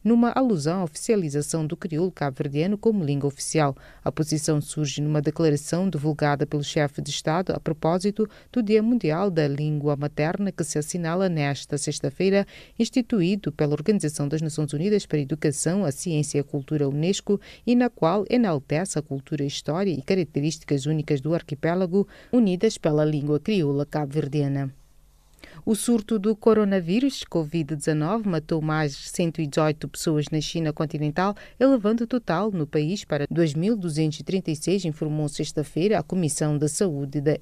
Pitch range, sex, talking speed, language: 150-200 Hz, female, 145 wpm, English